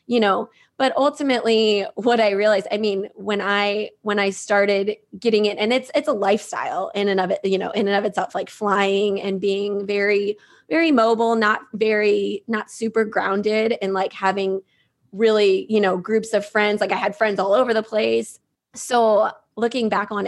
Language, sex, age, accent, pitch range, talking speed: English, female, 20-39, American, 195-225 Hz, 190 wpm